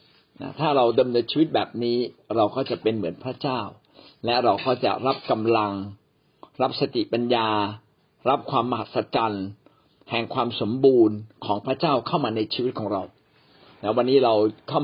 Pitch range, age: 110-145 Hz, 60-79